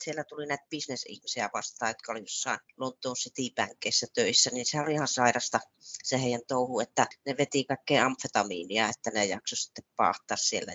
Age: 30-49